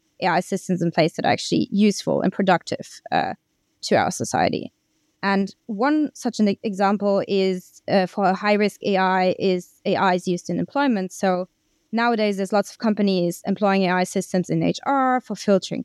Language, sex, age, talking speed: English, female, 20-39, 165 wpm